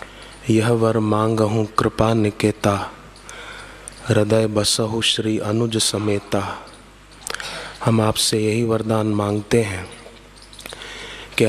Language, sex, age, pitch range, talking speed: Hindi, male, 20-39, 105-115 Hz, 90 wpm